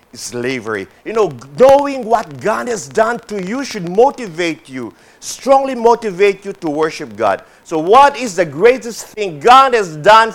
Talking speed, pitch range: 160 wpm, 155-235 Hz